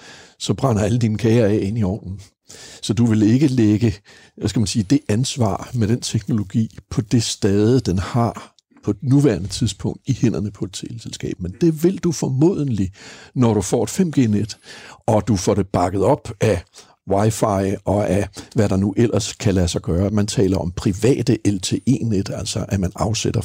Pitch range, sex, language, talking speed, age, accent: 100-130 Hz, male, Danish, 185 wpm, 60-79, native